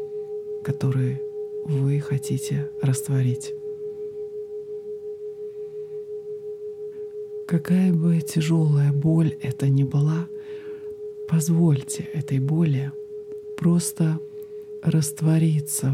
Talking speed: 60 wpm